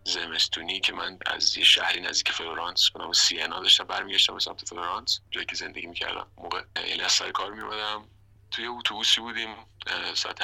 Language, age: Persian, 30-49